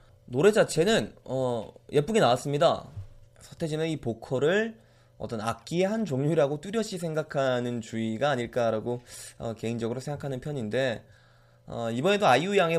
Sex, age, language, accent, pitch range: male, 20-39, Korean, native, 115-165 Hz